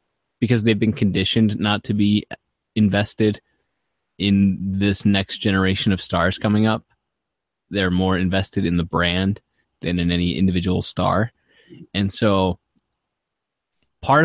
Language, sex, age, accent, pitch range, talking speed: English, male, 20-39, American, 95-120 Hz, 125 wpm